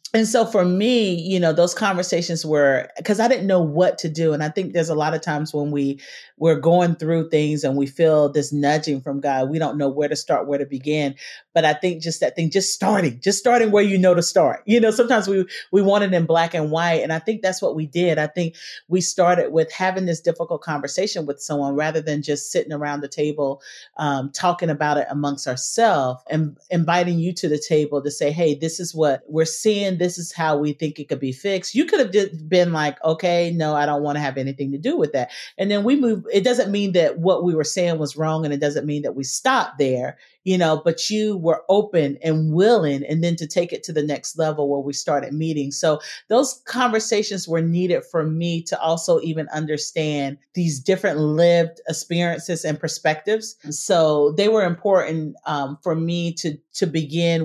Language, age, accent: English, 40-59, American